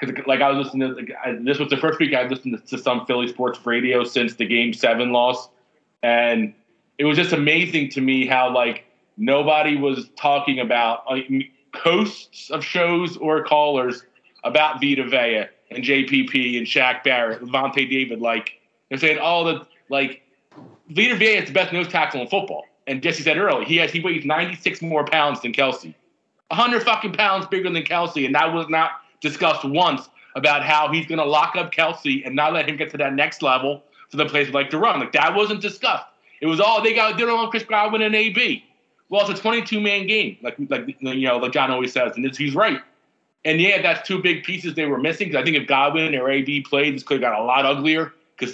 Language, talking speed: English, 220 wpm